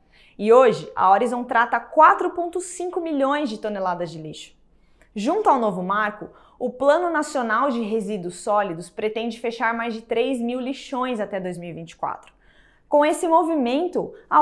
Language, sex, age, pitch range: English, female, 20-39, 225-310 Hz